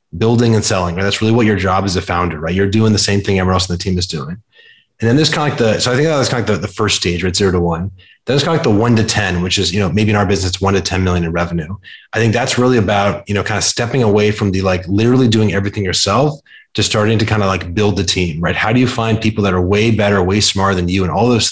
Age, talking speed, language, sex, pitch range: 30-49, 320 wpm, English, male, 95-115 Hz